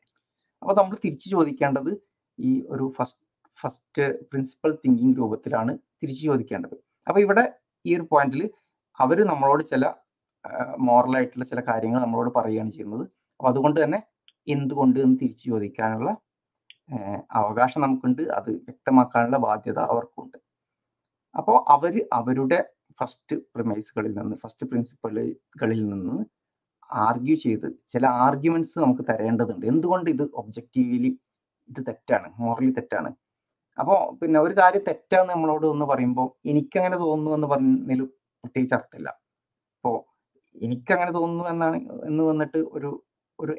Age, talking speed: 30-49, 115 wpm